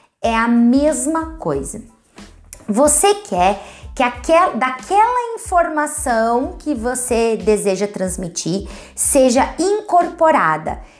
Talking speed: 80 wpm